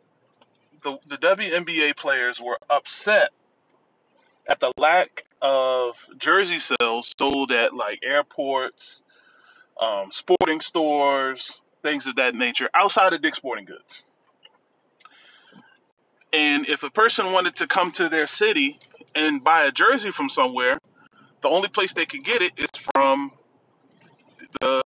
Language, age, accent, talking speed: English, 20-39, American, 130 wpm